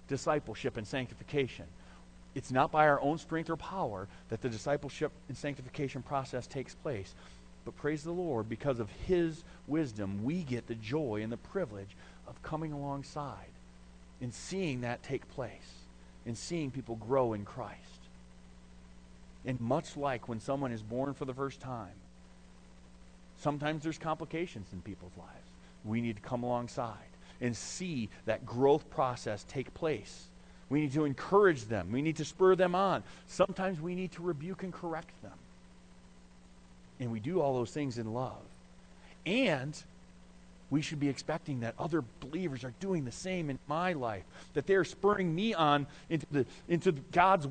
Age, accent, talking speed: 40-59, American, 160 wpm